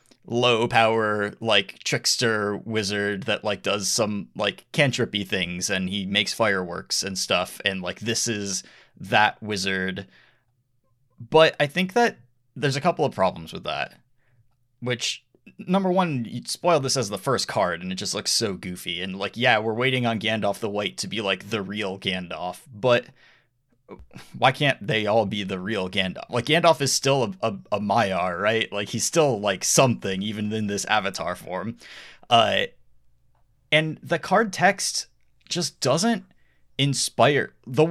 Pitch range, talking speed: 100-135 Hz, 160 wpm